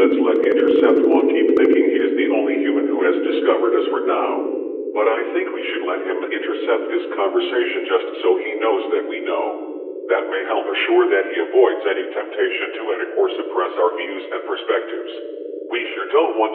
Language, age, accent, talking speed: English, 50-69, American, 200 wpm